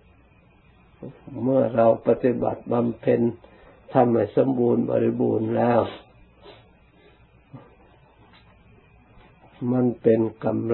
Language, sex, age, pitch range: Thai, male, 60-79, 110-120 Hz